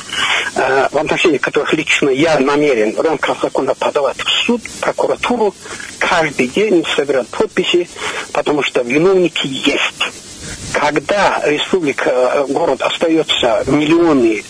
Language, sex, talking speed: Russian, male, 110 wpm